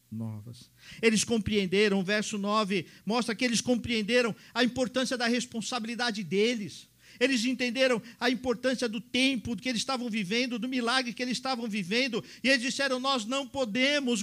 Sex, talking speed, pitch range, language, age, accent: male, 155 wpm, 160-250 Hz, Portuguese, 50-69, Brazilian